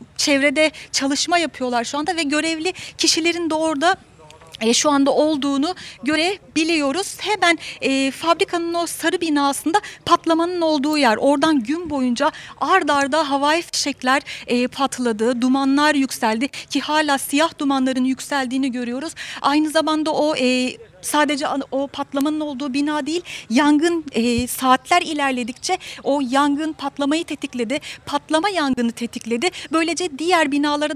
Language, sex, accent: Turkish, female, native